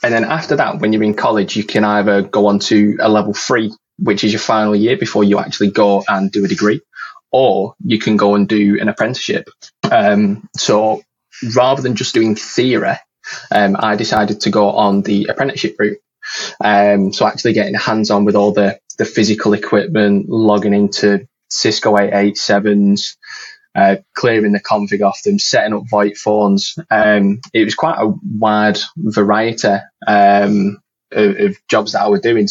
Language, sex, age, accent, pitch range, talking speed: English, male, 20-39, British, 100-110 Hz, 175 wpm